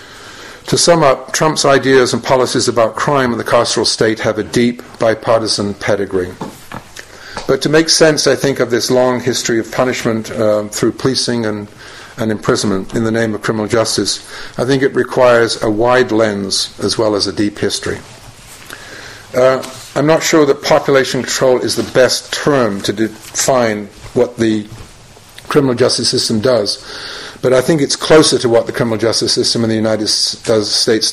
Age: 50-69